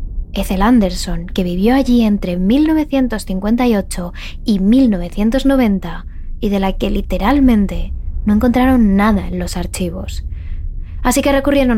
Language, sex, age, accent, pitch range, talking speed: Spanish, female, 20-39, Spanish, 185-235 Hz, 115 wpm